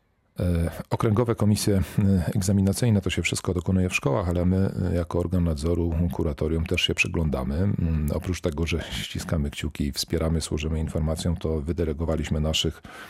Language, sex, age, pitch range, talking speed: Polish, male, 40-59, 80-95 Hz, 135 wpm